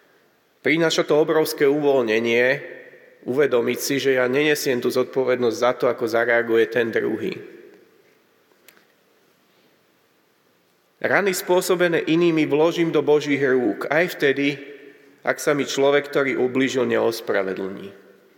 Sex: male